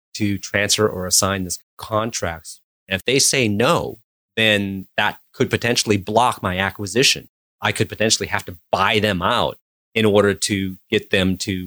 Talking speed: 165 wpm